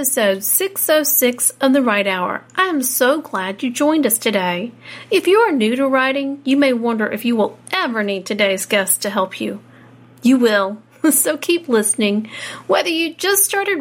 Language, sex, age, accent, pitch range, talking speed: English, female, 40-59, American, 210-275 Hz, 180 wpm